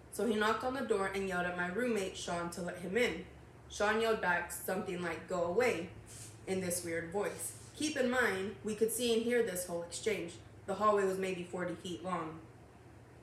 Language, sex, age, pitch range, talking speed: English, female, 20-39, 175-220 Hz, 205 wpm